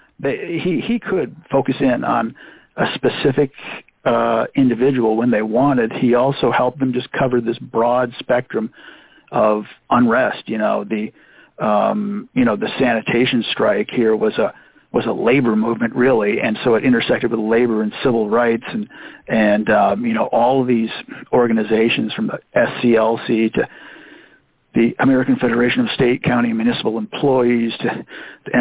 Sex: male